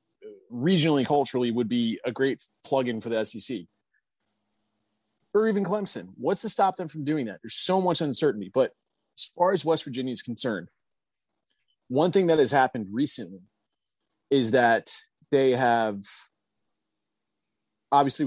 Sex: male